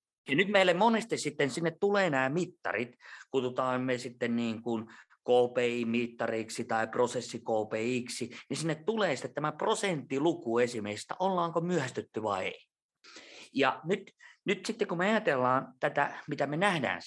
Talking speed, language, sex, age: 140 wpm, Finnish, male, 30-49